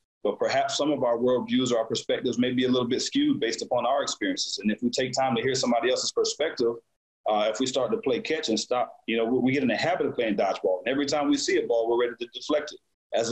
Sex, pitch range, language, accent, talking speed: male, 120-150 Hz, English, American, 275 wpm